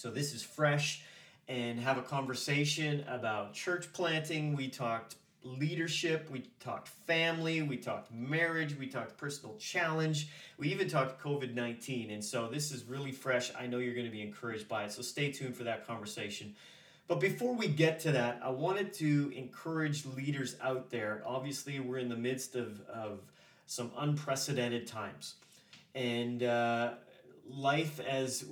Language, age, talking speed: English, 30-49, 160 wpm